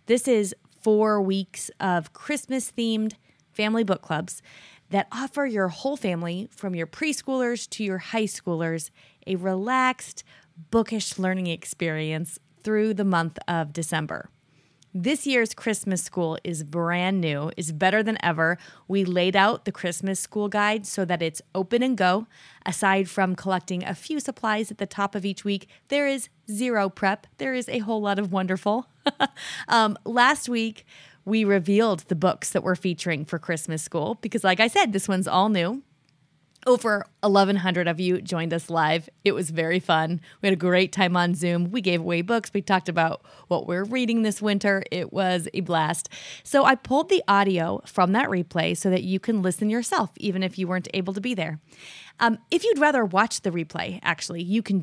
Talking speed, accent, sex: 180 wpm, American, female